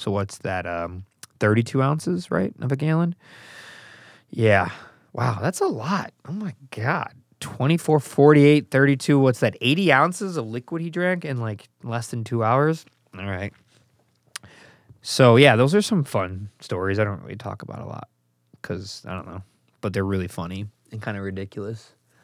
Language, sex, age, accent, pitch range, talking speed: English, male, 20-39, American, 100-130 Hz, 170 wpm